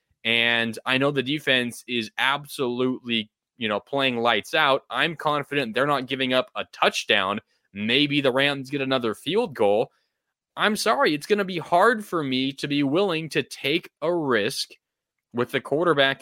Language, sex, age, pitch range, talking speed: English, male, 20-39, 135-170 Hz, 170 wpm